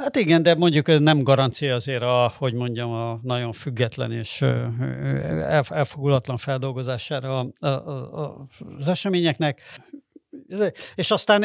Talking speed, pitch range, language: 110 wpm, 125-160 Hz, Hungarian